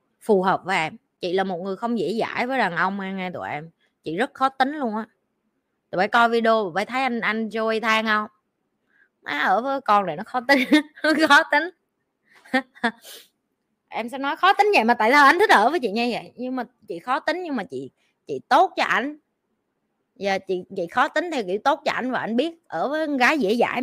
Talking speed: 230 wpm